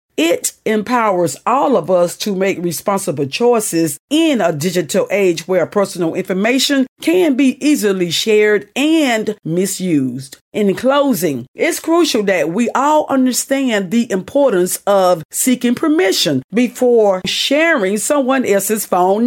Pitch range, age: 185-285 Hz, 40-59